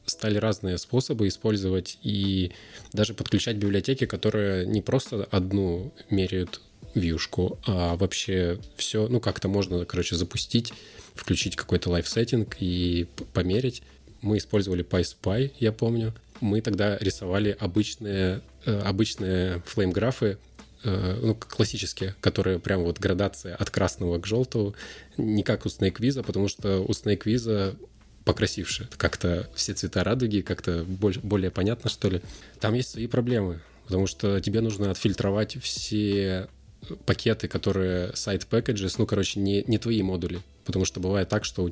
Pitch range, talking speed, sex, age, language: 95-110 Hz, 135 wpm, male, 20-39, Russian